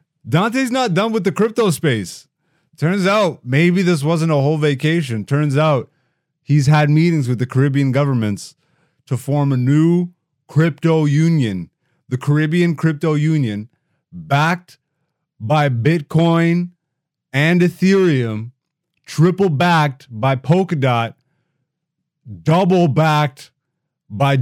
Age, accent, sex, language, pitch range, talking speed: 30-49, American, male, English, 140-165 Hz, 115 wpm